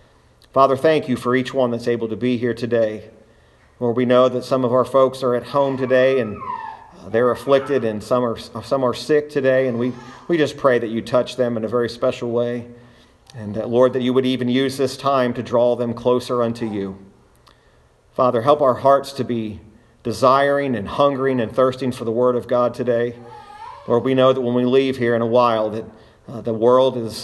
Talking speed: 210 wpm